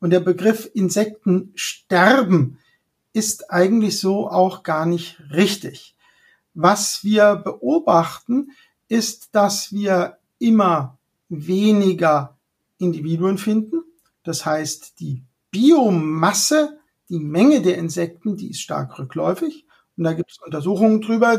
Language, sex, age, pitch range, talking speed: German, male, 50-69, 175-230 Hz, 110 wpm